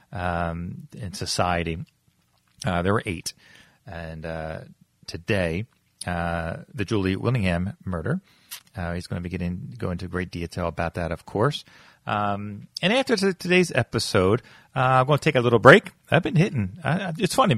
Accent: American